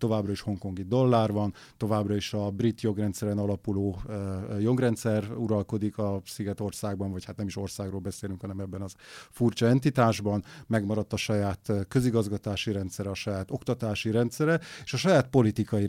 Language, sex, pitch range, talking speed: Hungarian, male, 105-125 Hz, 145 wpm